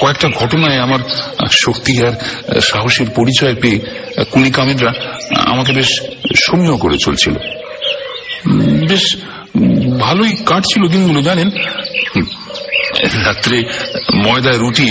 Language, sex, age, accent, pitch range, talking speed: Bengali, male, 60-79, native, 110-170 Hz, 75 wpm